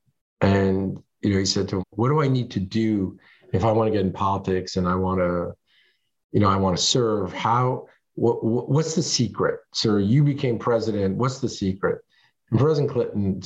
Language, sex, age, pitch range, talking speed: English, male, 50-69, 105-140 Hz, 205 wpm